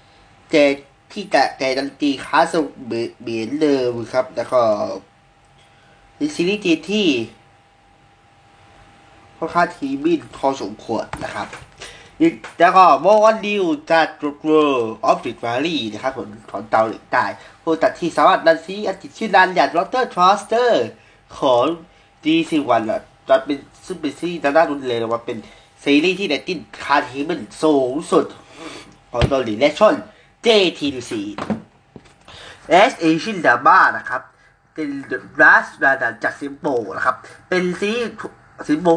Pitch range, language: 130-205 Hz, Thai